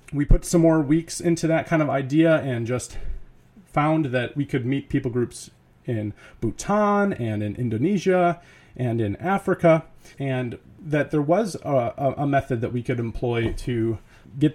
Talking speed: 165 wpm